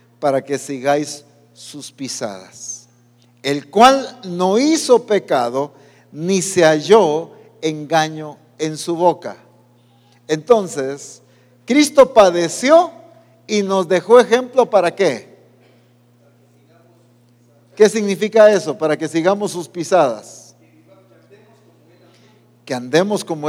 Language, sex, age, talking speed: English, male, 50-69, 95 wpm